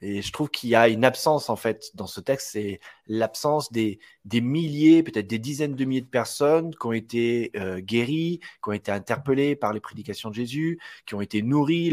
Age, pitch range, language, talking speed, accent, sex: 30-49, 110-140 Hz, French, 215 wpm, French, male